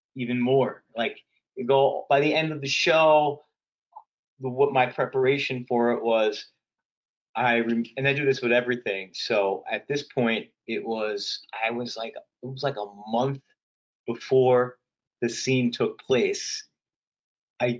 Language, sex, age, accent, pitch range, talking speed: English, male, 30-49, American, 120-140 Hz, 155 wpm